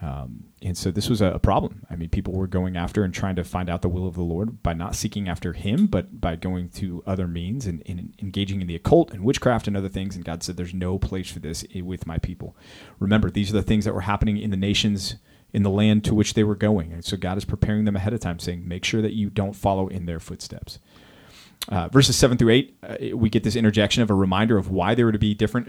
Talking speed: 265 wpm